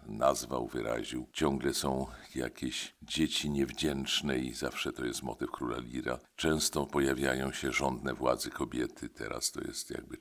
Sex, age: male, 50-69